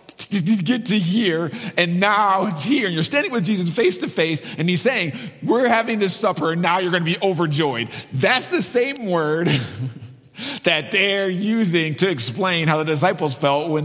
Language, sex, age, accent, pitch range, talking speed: English, male, 50-69, American, 130-180 Hz, 190 wpm